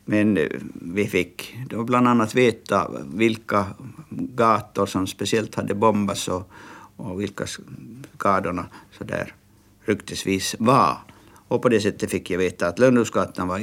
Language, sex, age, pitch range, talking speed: Swedish, male, 60-79, 100-115 Hz, 130 wpm